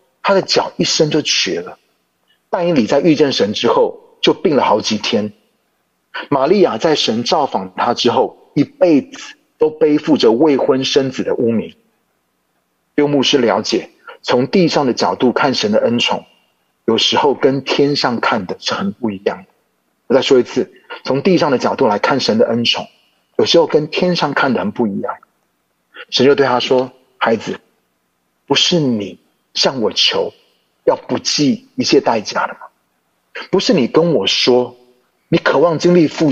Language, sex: Chinese, male